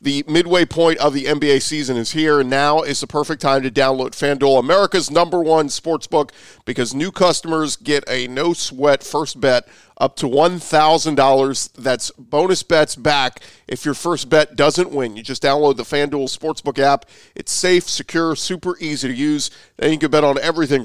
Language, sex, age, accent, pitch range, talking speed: English, male, 40-59, American, 135-160 Hz, 180 wpm